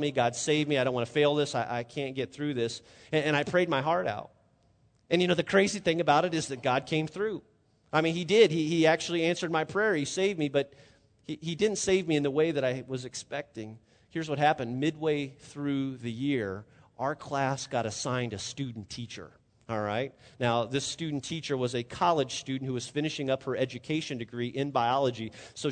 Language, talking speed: English, 225 wpm